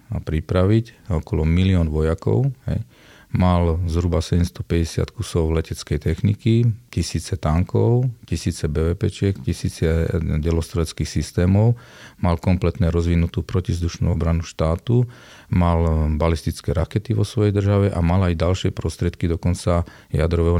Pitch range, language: 80-95 Hz, Slovak